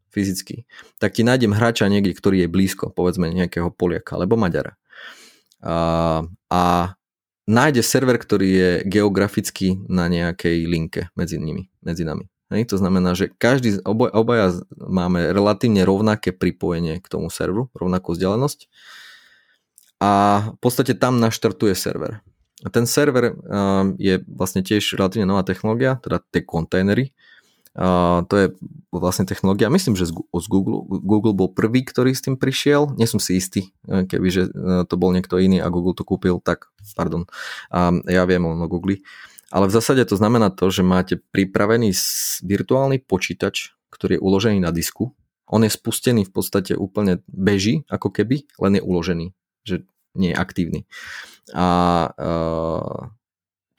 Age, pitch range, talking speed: 20-39, 90-110 Hz, 145 wpm